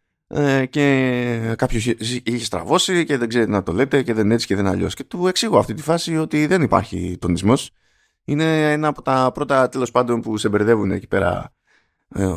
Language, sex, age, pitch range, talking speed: Greek, male, 20-39, 100-140 Hz, 190 wpm